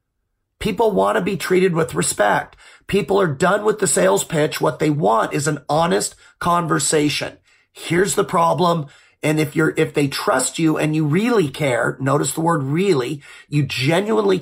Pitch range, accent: 150-190 Hz, American